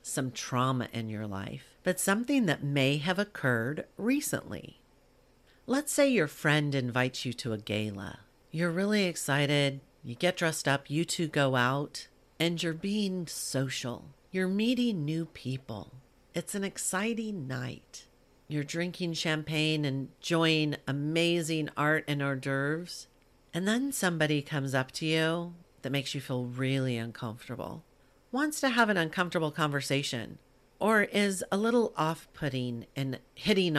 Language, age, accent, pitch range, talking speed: English, 50-69, American, 130-185 Hz, 140 wpm